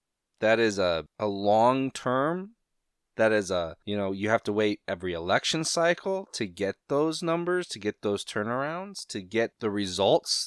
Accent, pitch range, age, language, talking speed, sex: American, 95-125 Hz, 30-49, English, 165 wpm, male